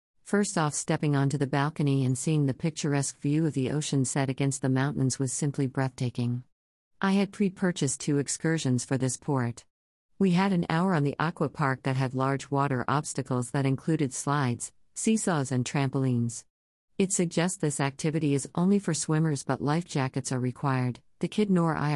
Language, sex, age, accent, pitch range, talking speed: English, female, 50-69, American, 130-160 Hz, 180 wpm